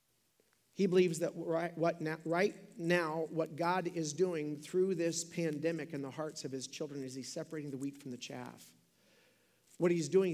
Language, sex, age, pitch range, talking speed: English, male, 40-59, 155-185 Hz, 175 wpm